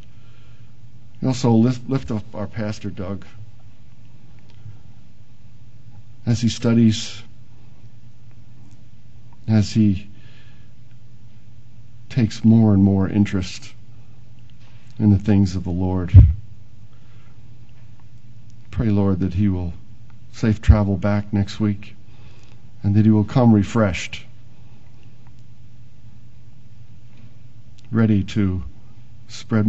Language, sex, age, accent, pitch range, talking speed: English, male, 50-69, American, 105-120 Hz, 85 wpm